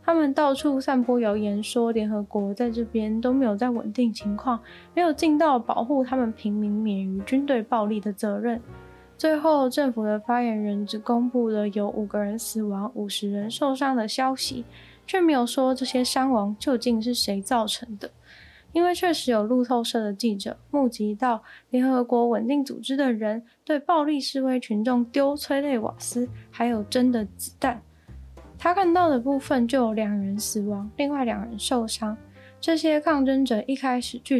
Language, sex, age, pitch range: Chinese, female, 10-29, 215-270 Hz